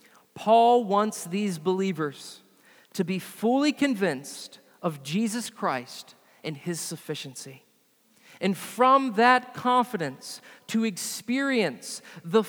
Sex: male